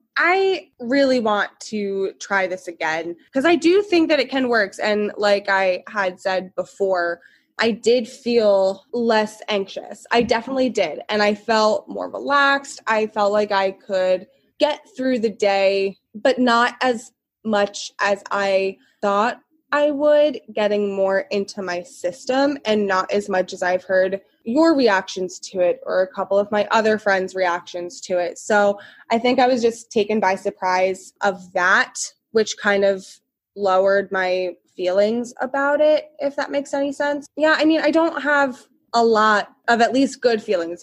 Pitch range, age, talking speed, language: 195-270 Hz, 20-39, 170 wpm, English